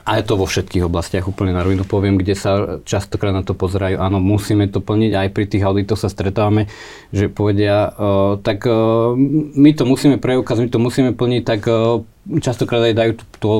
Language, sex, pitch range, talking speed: Slovak, male, 100-115 Hz, 185 wpm